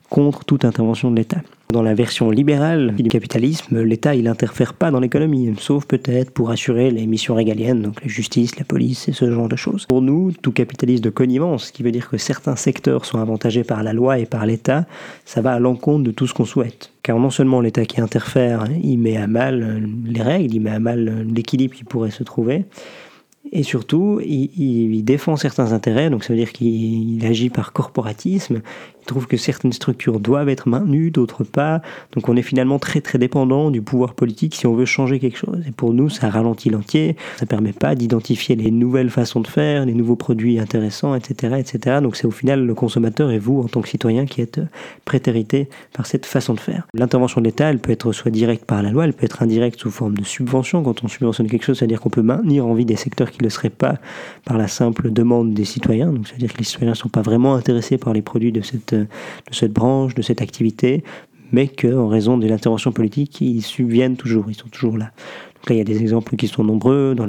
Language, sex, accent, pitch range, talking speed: French, male, French, 115-135 Hz, 225 wpm